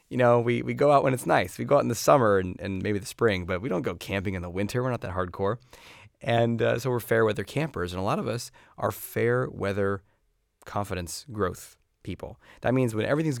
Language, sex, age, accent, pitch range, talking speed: English, male, 30-49, American, 95-120 Hz, 240 wpm